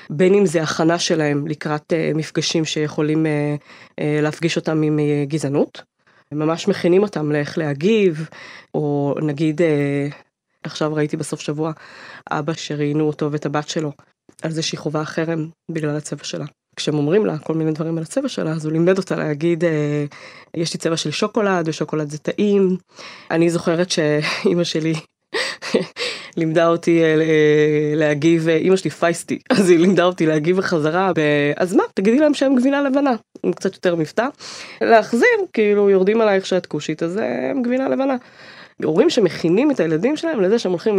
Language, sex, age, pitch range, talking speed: Hebrew, female, 20-39, 155-195 Hz, 165 wpm